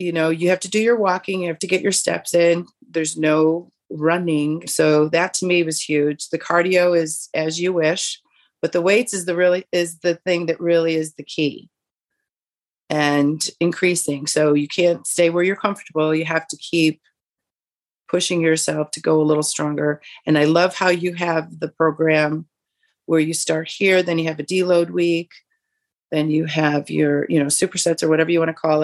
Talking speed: 200 wpm